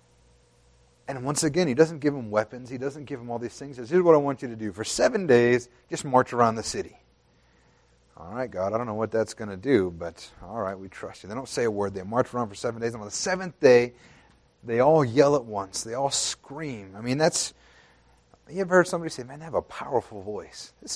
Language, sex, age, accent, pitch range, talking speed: English, male, 30-49, American, 105-145 Hz, 250 wpm